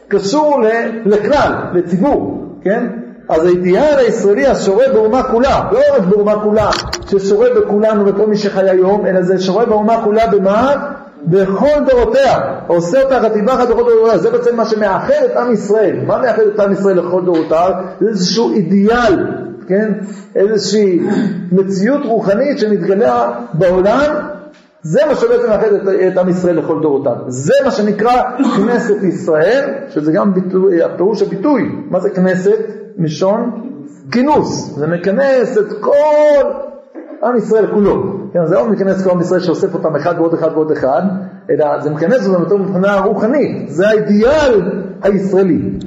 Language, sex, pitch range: Hebrew, male, 185-235 Hz